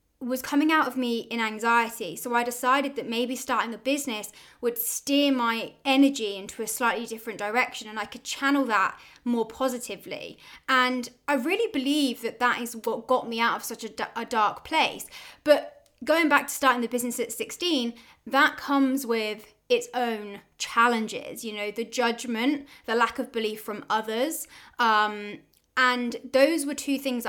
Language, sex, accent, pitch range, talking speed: English, female, British, 220-265 Hz, 175 wpm